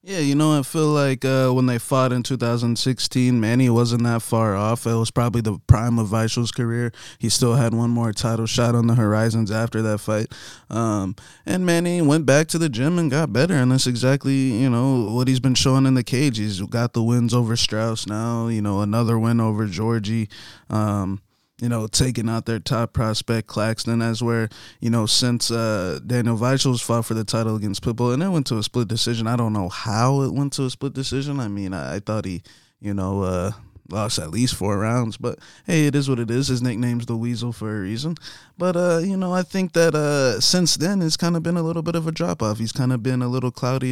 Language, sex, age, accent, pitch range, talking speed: English, male, 20-39, American, 110-135 Hz, 230 wpm